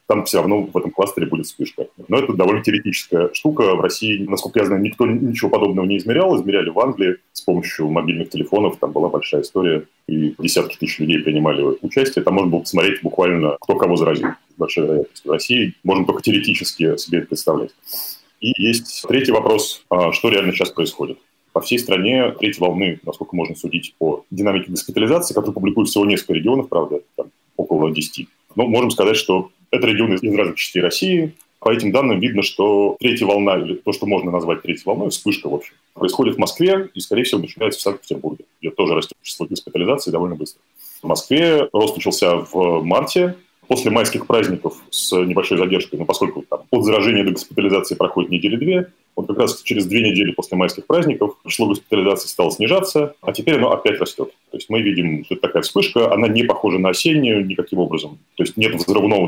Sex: male